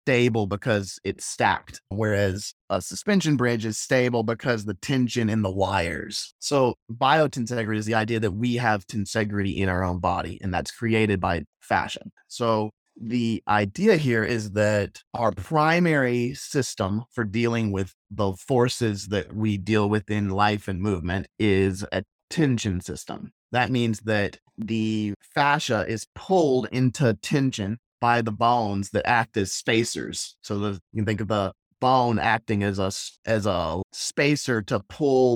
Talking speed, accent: 155 wpm, American